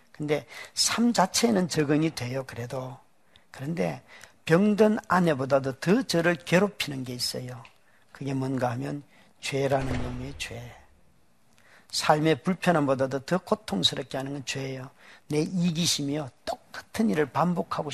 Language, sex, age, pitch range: Korean, male, 40-59, 130-170 Hz